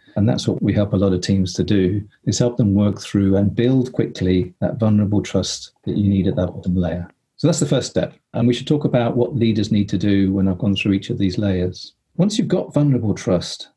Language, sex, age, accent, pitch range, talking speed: English, male, 40-59, British, 95-125 Hz, 250 wpm